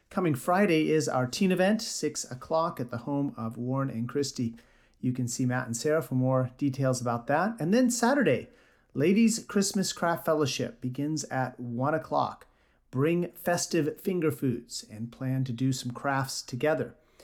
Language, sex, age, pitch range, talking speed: English, male, 40-59, 125-170 Hz, 165 wpm